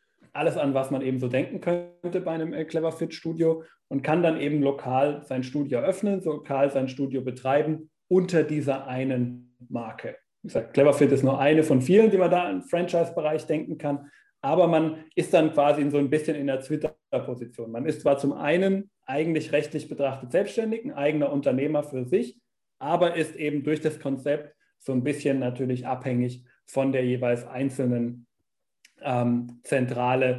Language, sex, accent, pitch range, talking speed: German, male, German, 130-165 Hz, 160 wpm